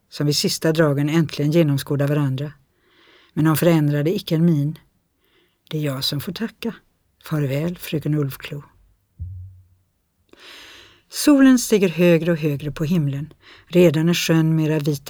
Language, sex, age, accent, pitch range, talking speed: Swedish, female, 60-79, native, 150-180 Hz, 130 wpm